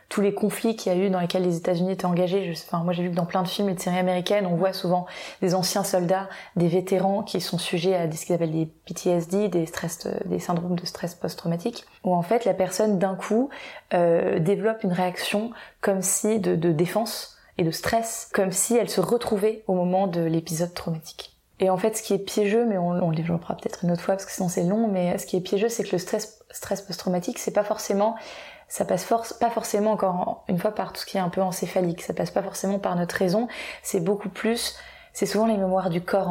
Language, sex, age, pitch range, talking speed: French, female, 20-39, 175-205 Hz, 250 wpm